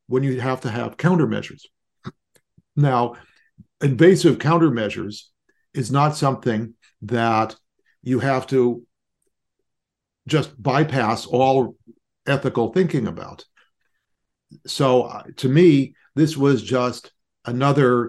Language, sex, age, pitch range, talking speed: English, male, 50-69, 110-135 Hz, 100 wpm